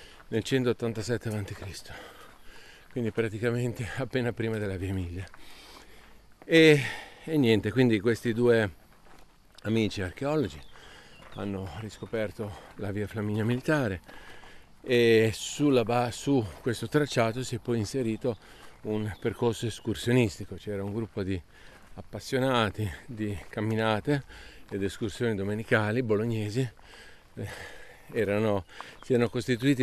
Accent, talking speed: native, 100 wpm